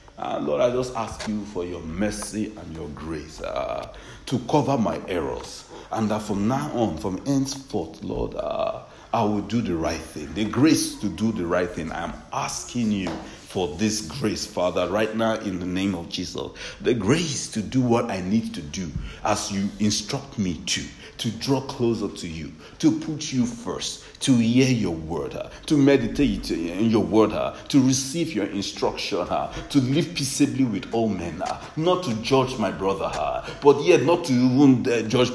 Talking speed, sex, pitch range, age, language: 185 wpm, male, 110-155 Hz, 60-79, English